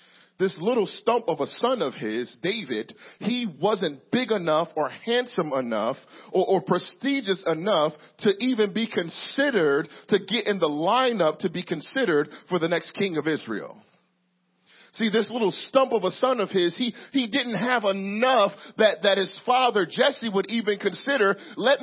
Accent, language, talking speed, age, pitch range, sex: American, English, 170 wpm, 40-59, 150-220 Hz, male